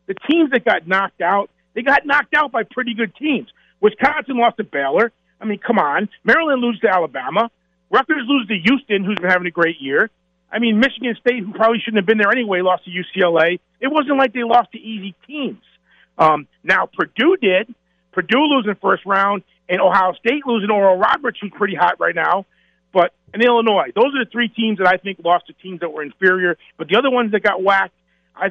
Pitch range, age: 180-225 Hz, 40-59